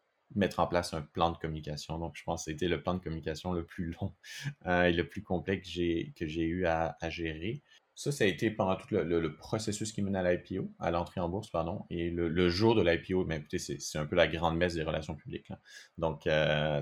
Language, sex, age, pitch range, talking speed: French, male, 30-49, 75-85 Hz, 255 wpm